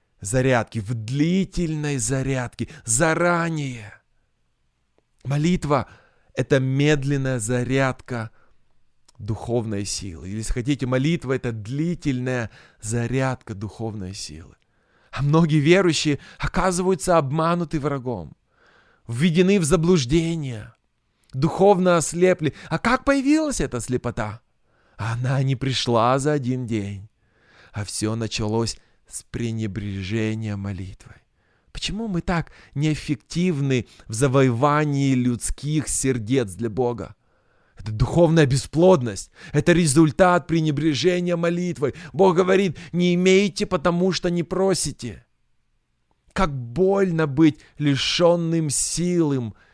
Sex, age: male, 20-39